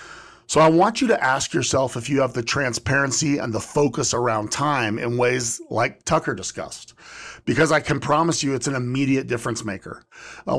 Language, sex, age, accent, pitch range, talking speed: English, male, 40-59, American, 135-195 Hz, 185 wpm